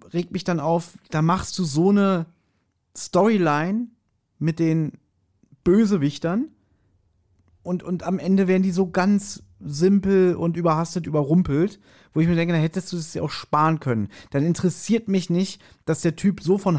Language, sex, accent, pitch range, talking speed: German, male, German, 145-190 Hz, 165 wpm